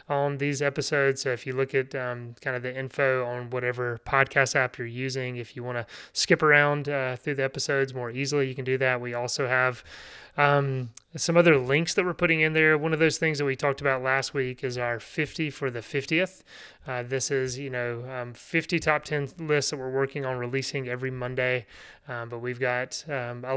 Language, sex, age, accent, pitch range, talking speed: English, male, 30-49, American, 125-145 Hz, 220 wpm